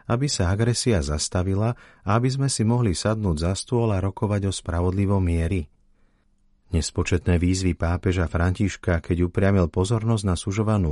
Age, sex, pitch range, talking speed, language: 40-59, male, 85-110 Hz, 145 wpm, Slovak